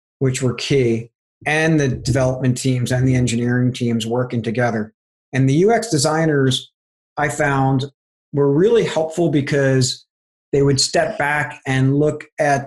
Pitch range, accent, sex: 125-150 Hz, American, male